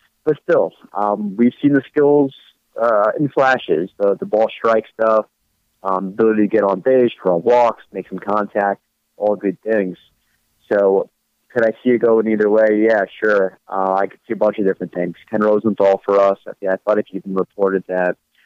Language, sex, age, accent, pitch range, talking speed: English, male, 30-49, American, 95-110 Hz, 195 wpm